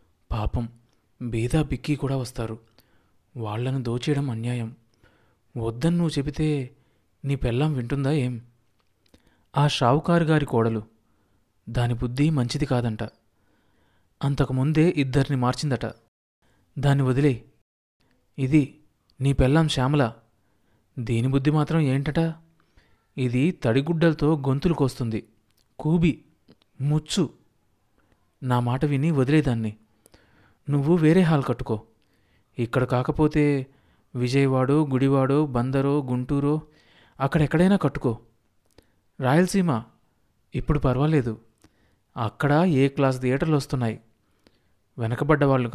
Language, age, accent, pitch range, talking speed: Telugu, 20-39, native, 110-145 Hz, 85 wpm